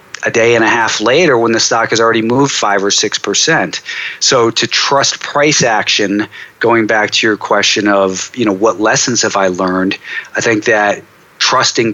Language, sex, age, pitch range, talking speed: English, male, 40-59, 100-120 Hz, 190 wpm